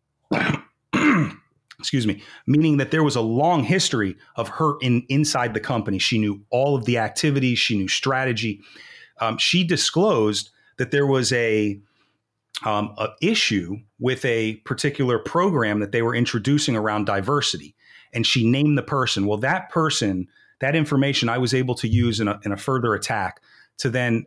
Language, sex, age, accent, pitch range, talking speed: English, male, 40-59, American, 105-135 Hz, 165 wpm